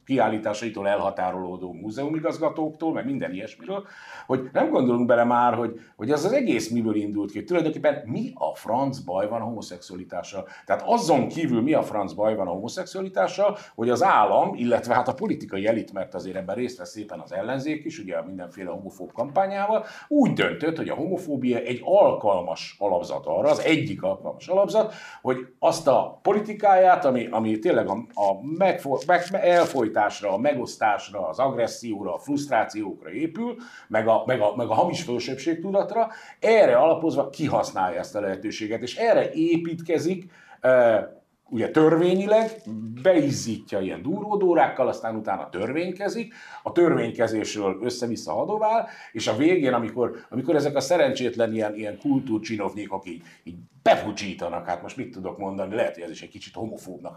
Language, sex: Hungarian, male